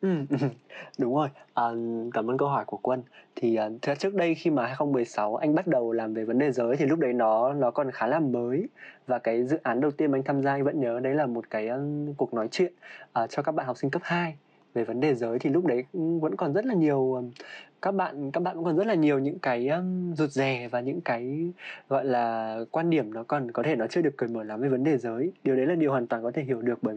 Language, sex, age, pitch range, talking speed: Vietnamese, male, 20-39, 120-155 Hz, 260 wpm